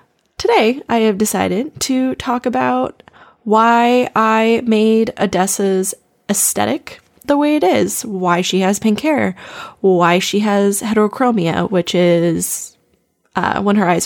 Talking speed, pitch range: 130 wpm, 190-235 Hz